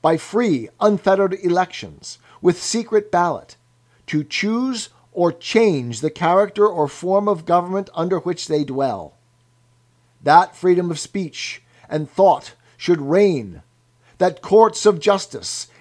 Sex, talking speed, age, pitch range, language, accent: male, 125 wpm, 50-69, 125-180 Hz, English, American